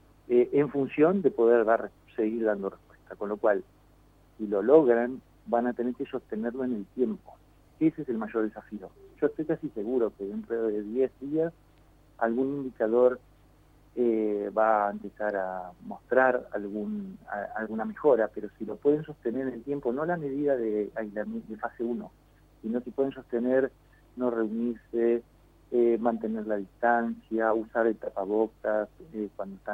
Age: 40-59